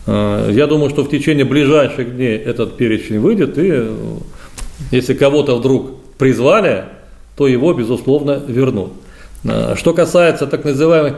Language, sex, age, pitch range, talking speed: Russian, male, 40-59, 120-145 Hz, 125 wpm